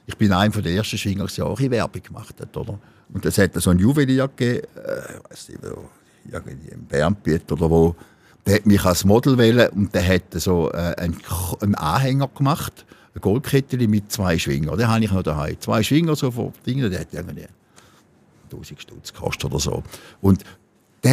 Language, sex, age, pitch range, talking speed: German, male, 60-79, 90-125 Hz, 220 wpm